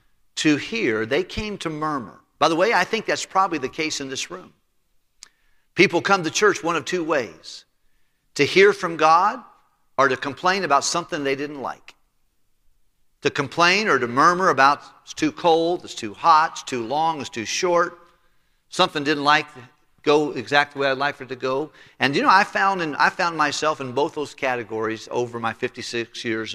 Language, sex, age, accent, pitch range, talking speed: English, male, 50-69, American, 135-180 Hz, 195 wpm